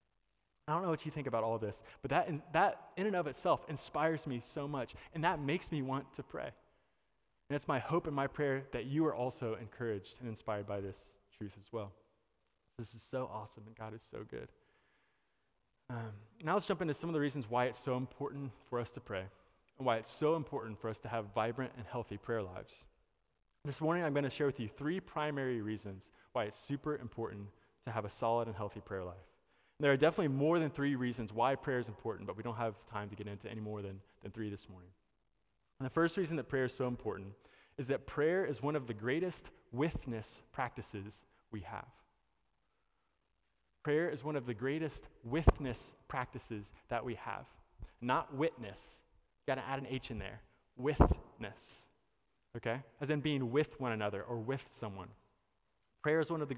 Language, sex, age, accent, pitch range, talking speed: English, male, 20-39, American, 110-140 Hz, 205 wpm